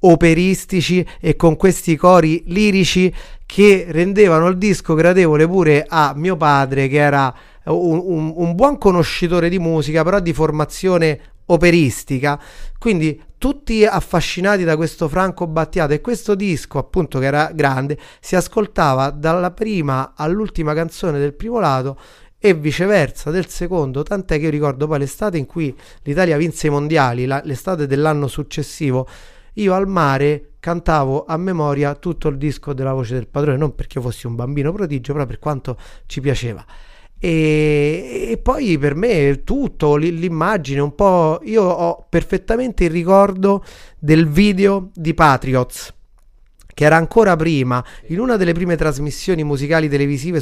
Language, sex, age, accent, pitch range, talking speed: Italian, male, 30-49, native, 145-185 Hz, 145 wpm